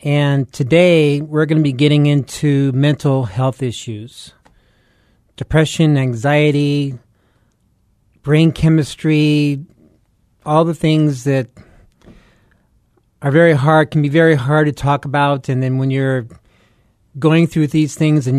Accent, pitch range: American, 120-150 Hz